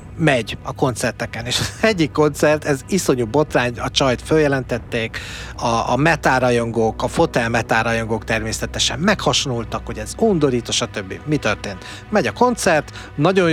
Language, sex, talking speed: Hungarian, male, 135 wpm